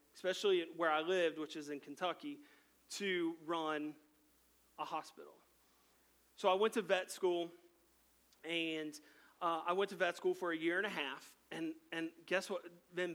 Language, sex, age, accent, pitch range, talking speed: English, male, 30-49, American, 155-195 Hz, 165 wpm